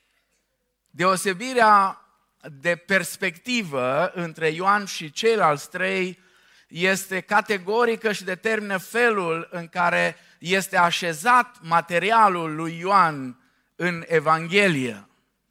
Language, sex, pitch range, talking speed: Romanian, male, 160-220 Hz, 85 wpm